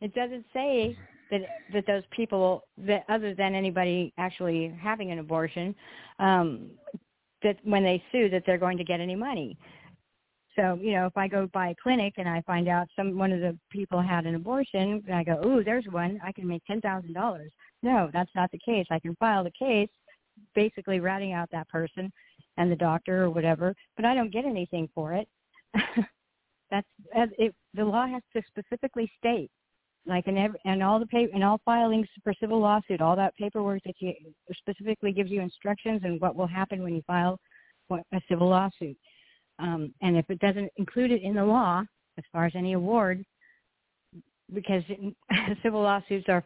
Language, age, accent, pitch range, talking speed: English, 50-69, American, 180-210 Hz, 180 wpm